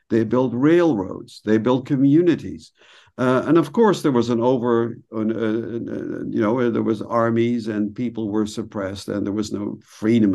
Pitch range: 110-145 Hz